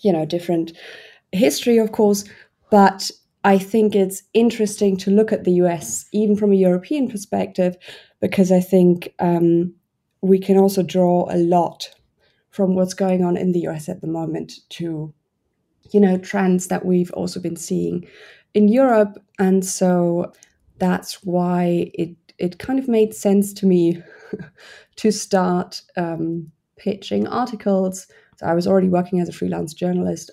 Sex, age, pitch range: female, 20-39, 175-200 Hz